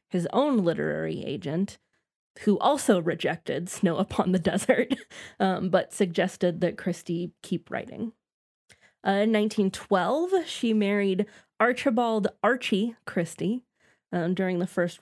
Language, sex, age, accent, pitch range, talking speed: English, female, 20-39, American, 175-220 Hz, 120 wpm